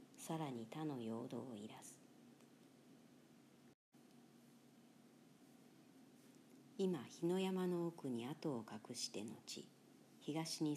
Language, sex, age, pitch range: Japanese, male, 40-59, 140-175 Hz